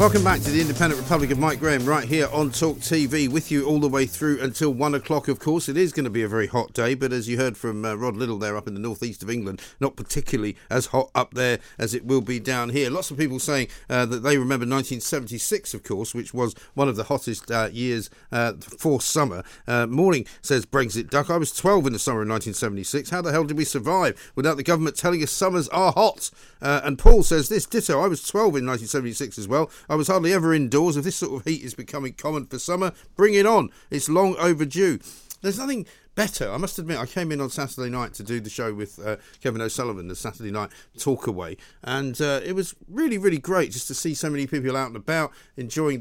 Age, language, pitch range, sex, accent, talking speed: 50-69, English, 120-155 Hz, male, British, 240 wpm